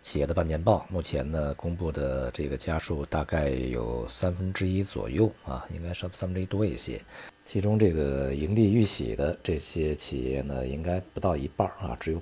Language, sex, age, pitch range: Chinese, male, 50-69, 70-95 Hz